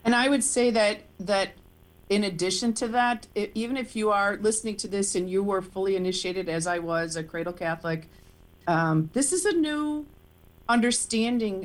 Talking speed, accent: 180 wpm, American